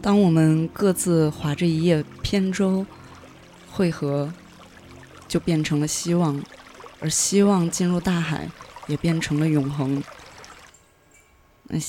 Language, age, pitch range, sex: Chinese, 20-39, 145-180 Hz, female